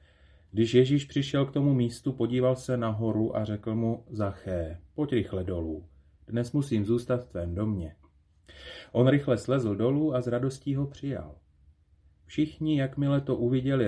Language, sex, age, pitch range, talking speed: Slovak, male, 30-49, 80-125 Hz, 150 wpm